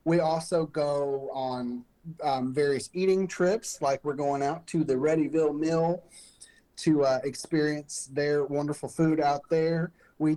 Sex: male